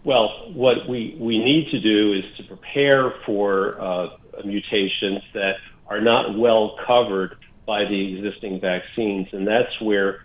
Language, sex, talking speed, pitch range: English, male, 145 wpm, 100-130 Hz